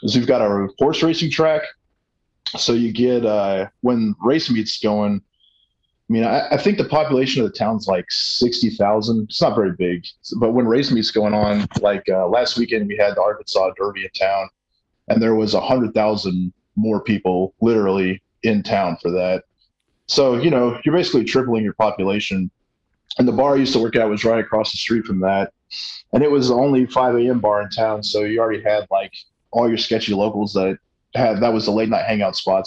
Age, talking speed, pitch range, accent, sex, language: 20-39, 200 wpm, 100-120 Hz, American, male, English